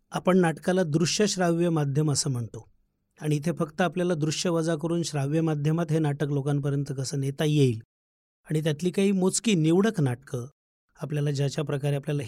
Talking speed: 155 wpm